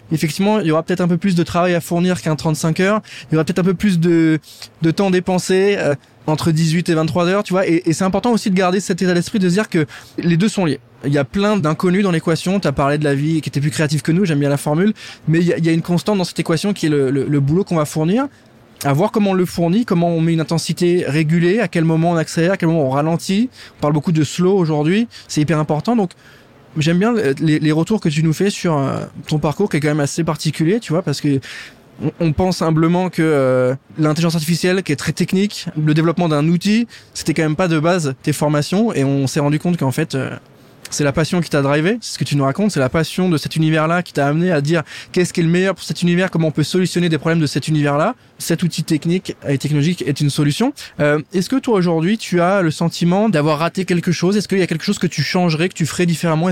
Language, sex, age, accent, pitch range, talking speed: French, male, 20-39, French, 150-180 Hz, 270 wpm